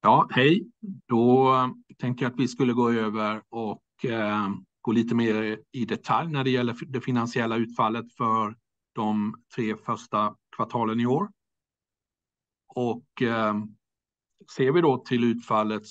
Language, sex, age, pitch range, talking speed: Swedish, male, 60-79, 110-130 Hz, 130 wpm